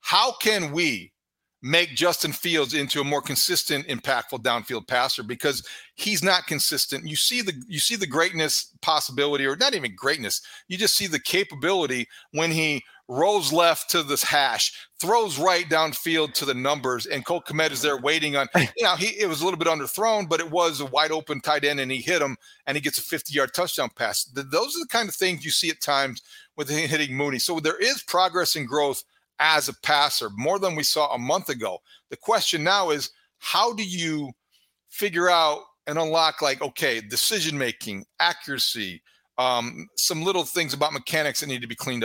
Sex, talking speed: male, 195 wpm